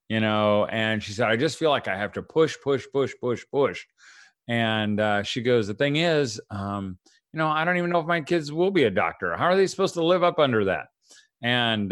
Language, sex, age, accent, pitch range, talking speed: English, male, 40-59, American, 110-160 Hz, 240 wpm